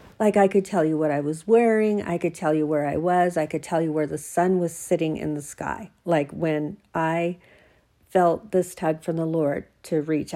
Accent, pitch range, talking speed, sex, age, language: American, 165-215 Hz, 225 wpm, female, 50-69, English